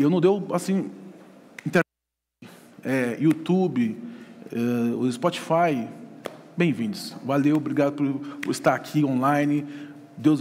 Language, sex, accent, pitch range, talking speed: Portuguese, male, Brazilian, 150-225 Hz, 105 wpm